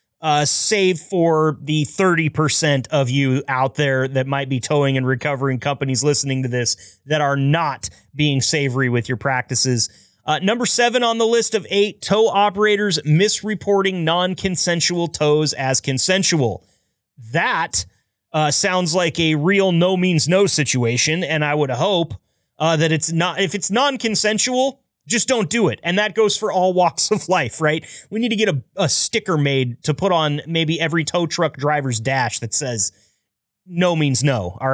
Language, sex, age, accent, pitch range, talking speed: English, male, 30-49, American, 140-190 Hz, 175 wpm